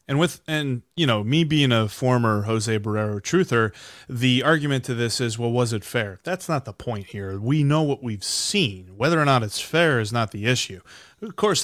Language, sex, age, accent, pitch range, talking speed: English, male, 30-49, American, 115-155 Hz, 215 wpm